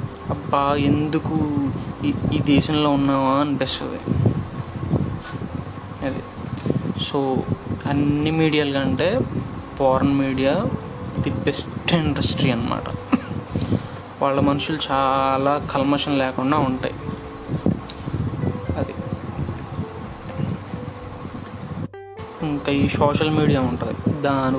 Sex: male